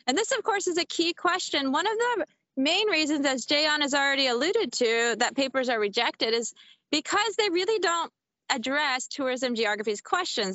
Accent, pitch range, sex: American, 230-310 Hz, female